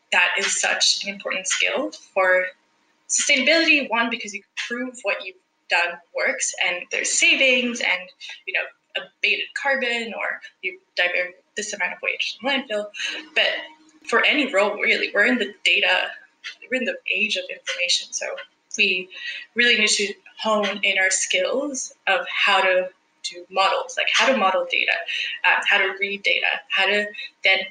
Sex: female